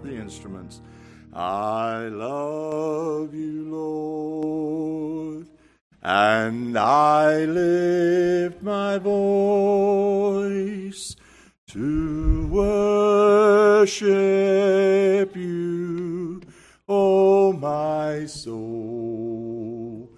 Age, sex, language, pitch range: 50-69, male, English, 140-195 Hz